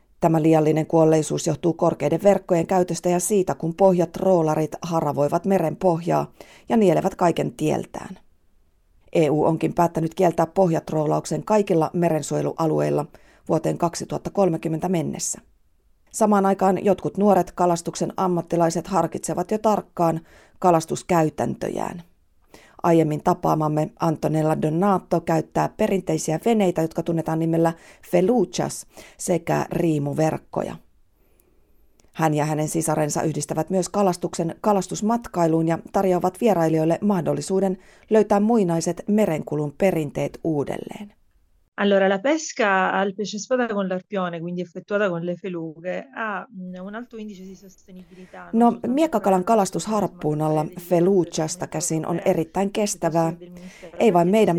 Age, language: 40-59, Finnish